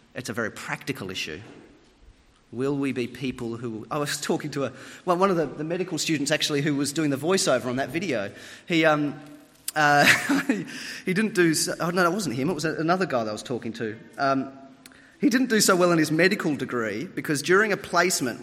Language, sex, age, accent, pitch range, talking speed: English, male, 30-49, Australian, 135-185 Hz, 215 wpm